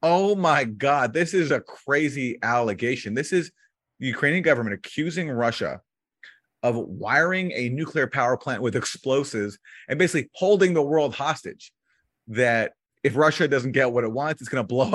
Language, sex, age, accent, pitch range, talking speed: English, male, 30-49, American, 110-140 Hz, 165 wpm